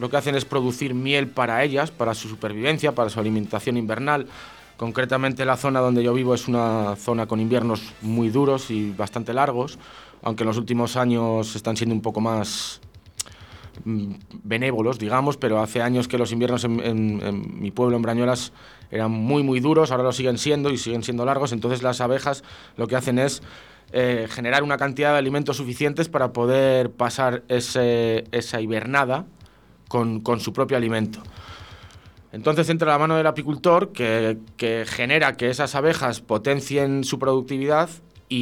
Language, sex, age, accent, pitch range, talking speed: Spanish, male, 20-39, Spanish, 115-135 Hz, 170 wpm